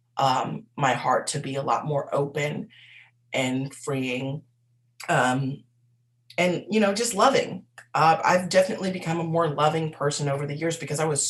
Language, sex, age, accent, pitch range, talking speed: English, female, 30-49, American, 135-160 Hz, 165 wpm